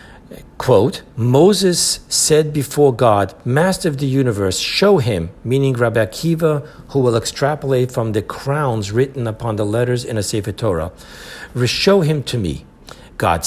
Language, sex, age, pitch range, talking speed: English, male, 60-79, 115-145 Hz, 145 wpm